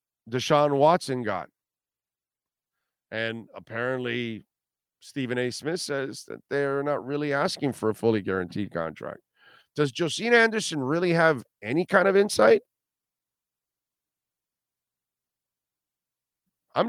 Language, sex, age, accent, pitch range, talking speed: English, male, 50-69, American, 115-160 Hz, 105 wpm